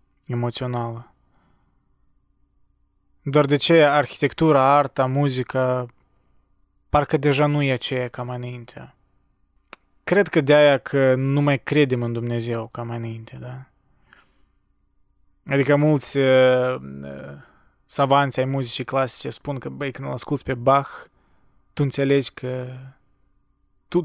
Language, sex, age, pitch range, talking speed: Romanian, male, 20-39, 120-140 Hz, 110 wpm